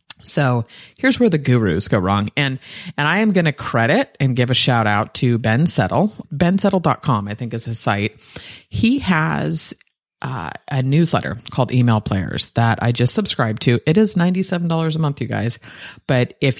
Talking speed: 180 wpm